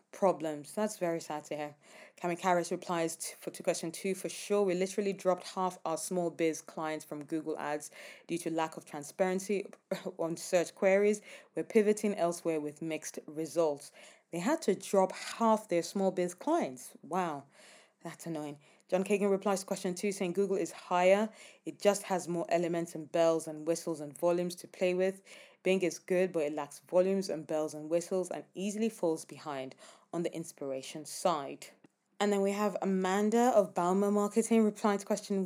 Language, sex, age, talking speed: English, female, 20-39, 180 wpm